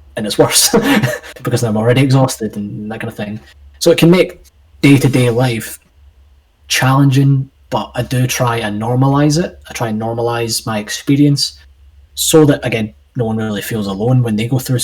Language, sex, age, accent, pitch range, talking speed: English, male, 20-39, British, 100-125 Hz, 180 wpm